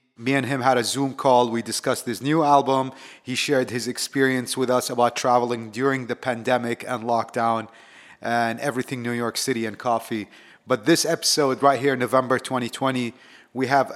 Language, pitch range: English, 120-140 Hz